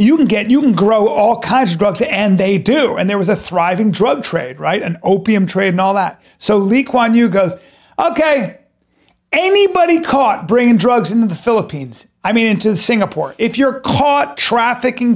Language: English